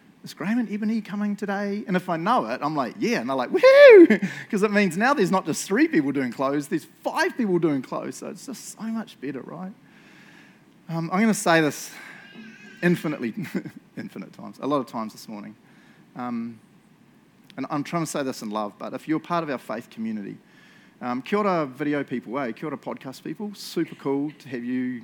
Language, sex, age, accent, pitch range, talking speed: English, male, 30-49, Australian, 150-215 Hz, 210 wpm